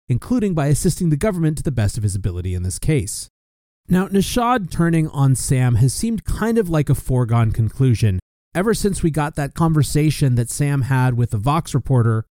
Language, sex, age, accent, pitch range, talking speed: English, male, 30-49, American, 120-165 Hz, 195 wpm